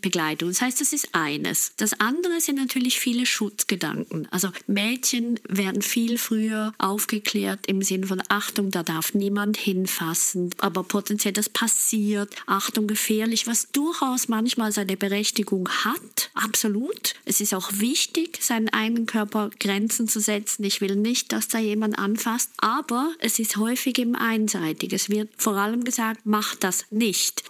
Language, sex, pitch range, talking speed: German, female, 205-240 Hz, 155 wpm